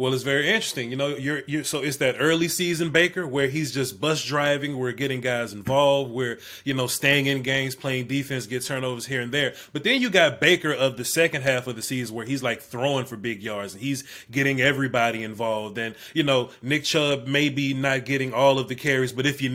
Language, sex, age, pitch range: English, male, 20-39, 135-165 Hz